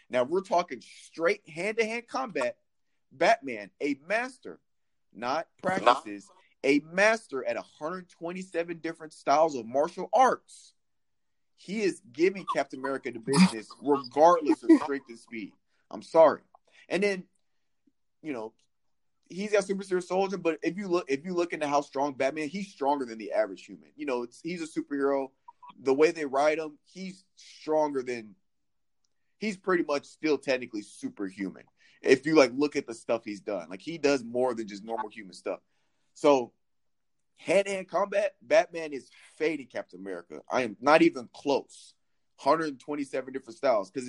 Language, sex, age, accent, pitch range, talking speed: English, male, 30-49, American, 130-185 Hz, 155 wpm